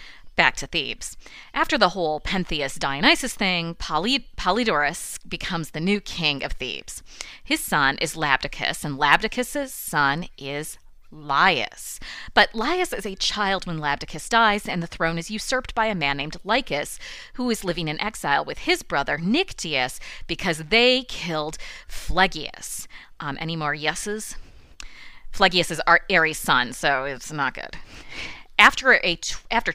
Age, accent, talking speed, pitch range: 30-49, American, 140 wpm, 150-225 Hz